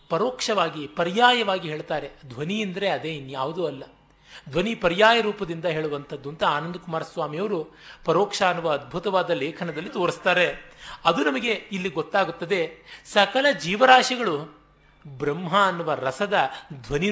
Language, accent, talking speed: Kannada, native, 105 wpm